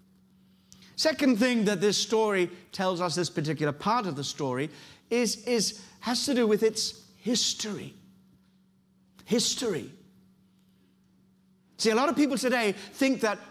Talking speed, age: 135 wpm, 50-69